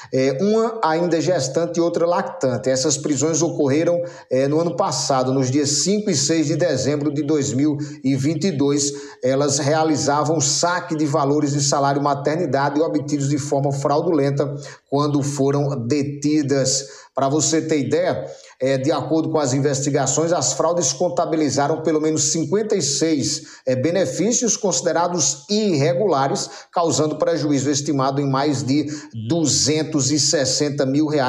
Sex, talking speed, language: male, 125 wpm, Portuguese